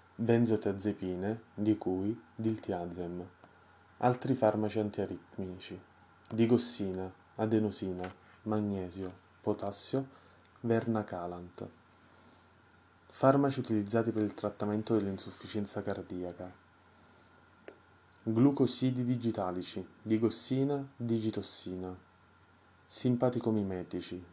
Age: 20-39